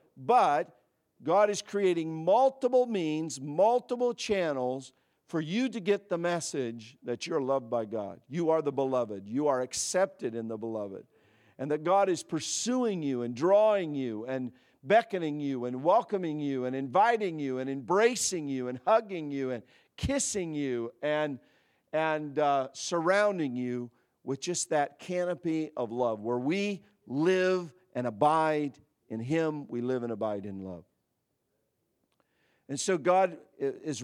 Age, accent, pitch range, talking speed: 50-69, American, 125-170 Hz, 150 wpm